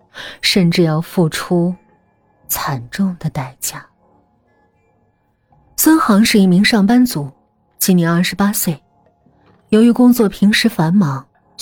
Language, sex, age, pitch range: Chinese, female, 30-49, 165-240 Hz